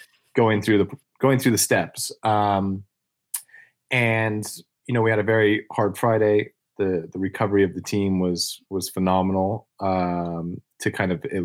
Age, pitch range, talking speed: 30-49, 95-115 Hz, 160 wpm